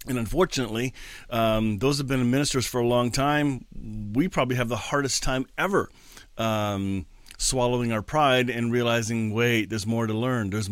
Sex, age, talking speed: male, 40-59, 170 wpm